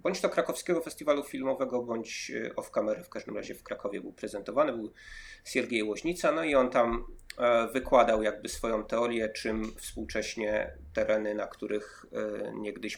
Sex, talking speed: male, 145 wpm